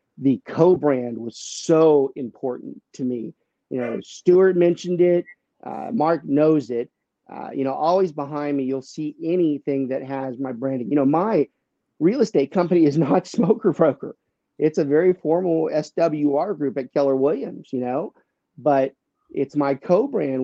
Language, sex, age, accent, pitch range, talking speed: English, male, 40-59, American, 130-160 Hz, 160 wpm